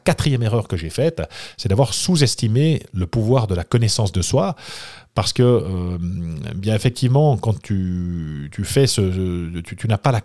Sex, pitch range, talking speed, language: male, 105-140 Hz, 175 wpm, French